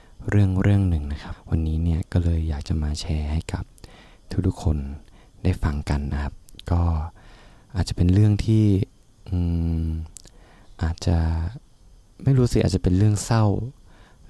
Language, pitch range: Thai, 80-105 Hz